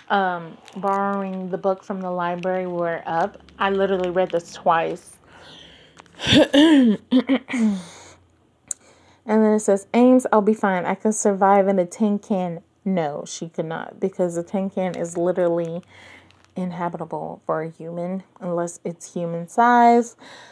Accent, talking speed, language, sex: American, 135 wpm, English, female